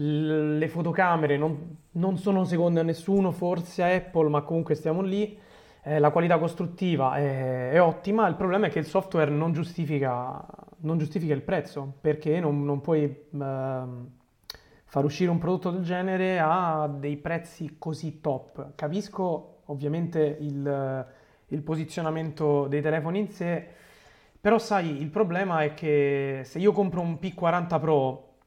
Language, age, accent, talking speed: Italian, 30-49, native, 150 wpm